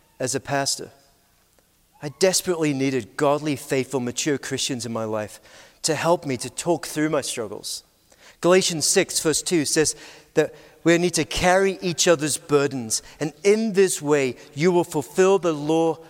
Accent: British